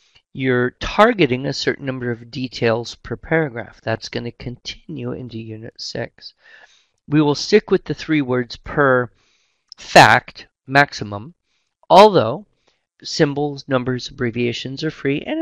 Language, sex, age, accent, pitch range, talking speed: English, male, 40-59, American, 115-140 Hz, 130 wpm